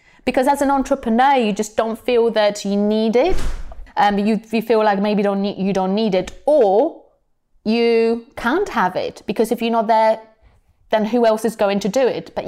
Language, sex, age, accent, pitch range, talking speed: English, female, 30-49, British, 195-240 Hz, 210 wpm